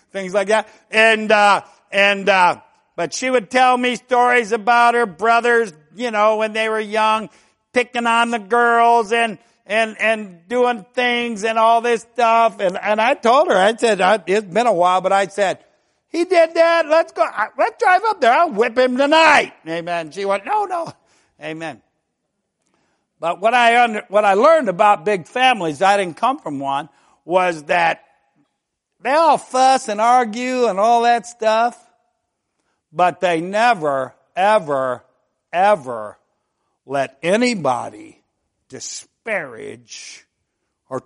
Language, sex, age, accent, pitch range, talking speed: English, male, 60-79, American, 175-240 Hz, 155 wpm